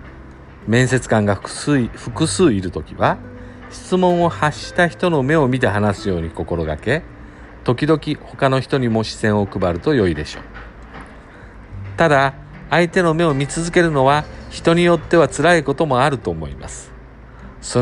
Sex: male